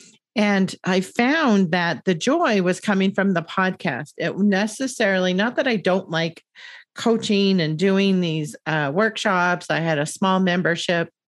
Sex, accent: female, American